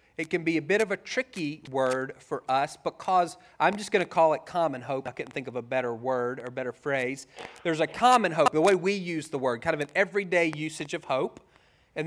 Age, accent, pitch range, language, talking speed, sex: 30-49, American, 140-175 Hz, English, 240 wpm, male